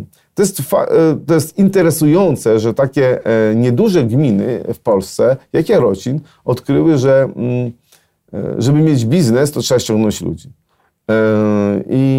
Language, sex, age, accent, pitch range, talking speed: Polish, male, 40-59, native, 110-135 Hz, 110 wpm